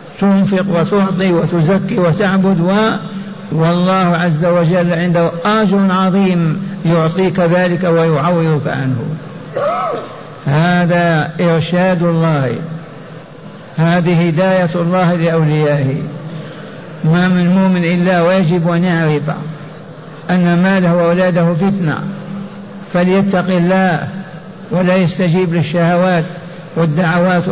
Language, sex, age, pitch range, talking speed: Arabic, male, 60-79, 155-180 Hz, 85 wpm